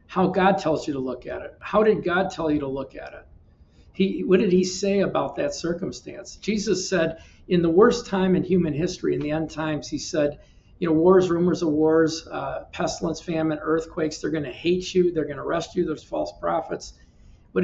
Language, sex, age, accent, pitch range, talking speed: English, male, 50-69, American, 150-180 Hz, 210 wpm